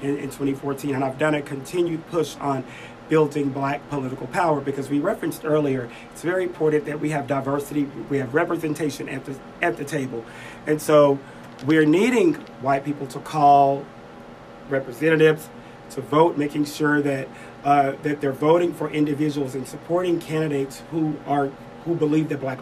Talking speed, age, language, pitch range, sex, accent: 160 wpm, 40-59, English, 135-155 Hz, male, American